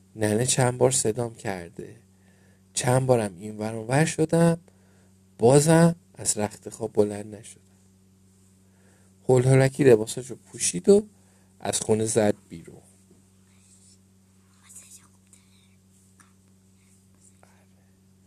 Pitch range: 95-115 Hz